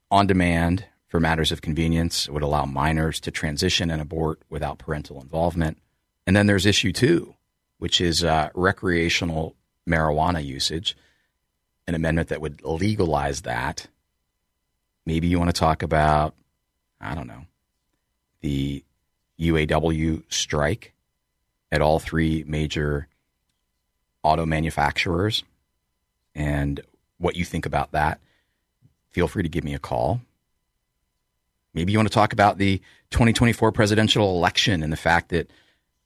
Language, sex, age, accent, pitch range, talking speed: English, male, 40-59, American, 70-90 Hz, 130 wpm